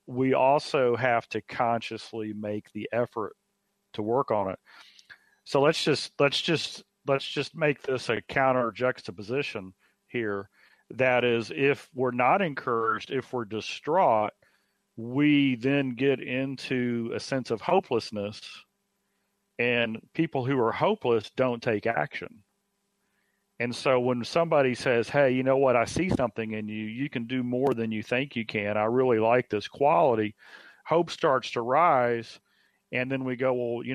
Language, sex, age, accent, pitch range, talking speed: English, male, 40-59, American, 110-135 Hz, 155 wpm